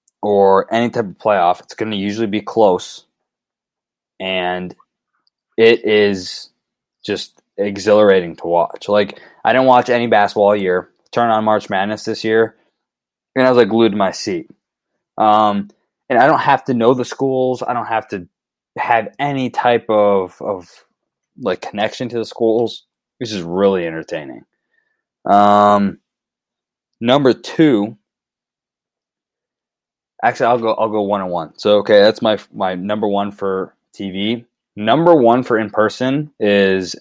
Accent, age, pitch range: American, 20-39, 100-115 Hz